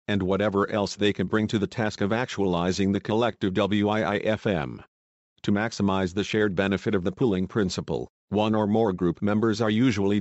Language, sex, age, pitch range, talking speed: English, male, 50-69, 95-110 Hz, 175 wpm